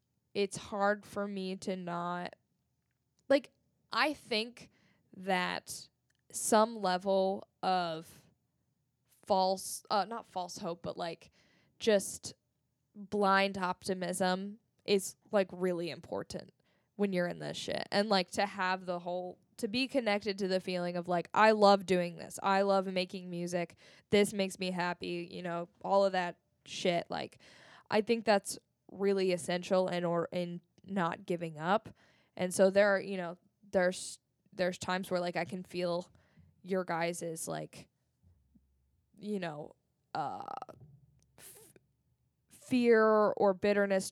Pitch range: 175-205 Hz